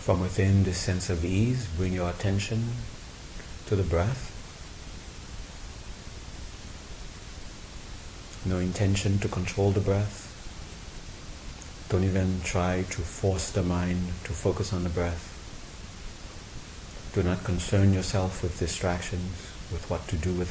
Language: English